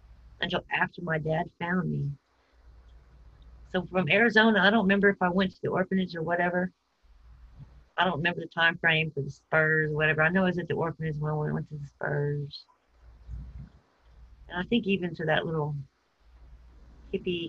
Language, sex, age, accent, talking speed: English, female, 40-59, American, 180 wpm